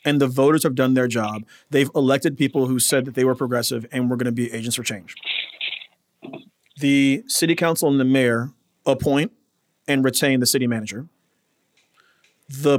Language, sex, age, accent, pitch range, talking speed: English, male, 40-59, American, 125-160 Hz, 170 wpm